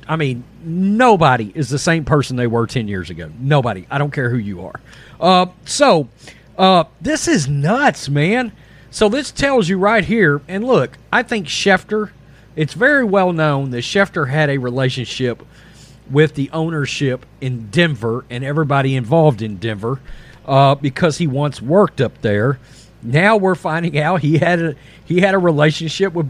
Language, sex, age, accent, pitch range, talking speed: English, male, 40-59, American, 140-215 Hz, 165 wpm